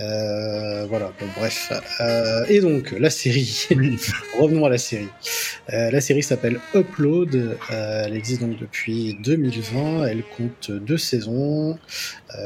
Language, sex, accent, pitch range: French, male, French, 105-135 Hz